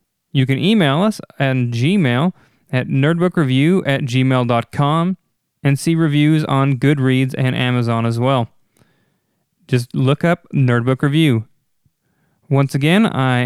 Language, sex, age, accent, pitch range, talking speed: English, male, 20-39, American, 125-155 Hz, 120 wpm